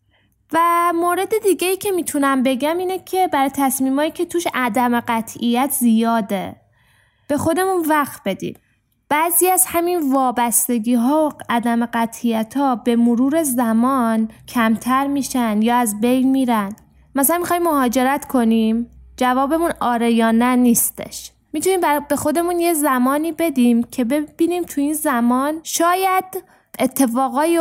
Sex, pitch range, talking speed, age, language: female, 230-320 Hz, 130 wpm, 10-29, English